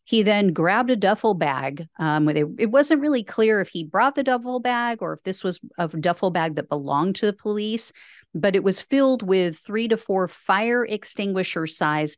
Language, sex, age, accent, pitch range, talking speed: English, female, 50-69, American, 165-225 Hz, 190 wpm